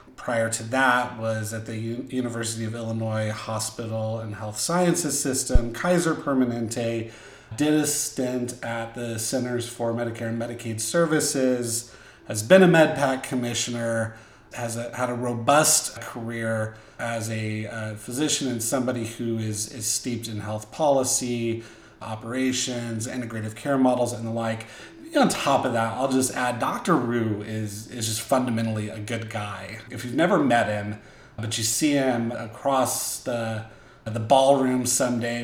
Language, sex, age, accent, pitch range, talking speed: English, male, 30-49, American, 110-125 Hz, 145 wpm